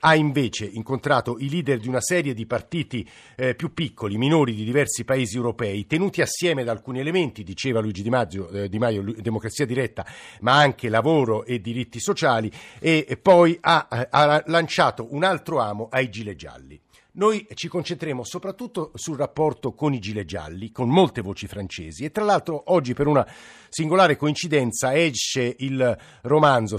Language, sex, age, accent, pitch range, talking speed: Italian, male, 50-69, native, 115-155 Hz, 165 wpm